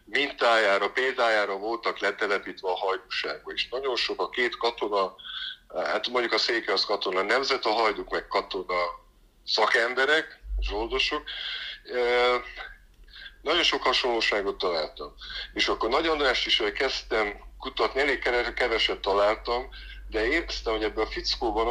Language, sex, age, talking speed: Hungarian, male, 50-69, 120 wpm